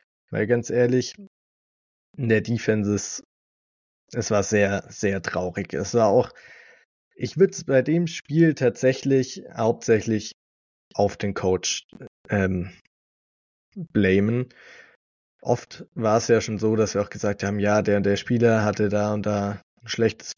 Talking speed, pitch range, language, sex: 145 wpm, 105-125 Hz, German, male